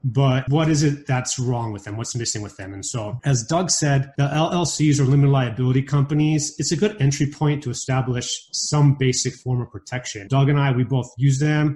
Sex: male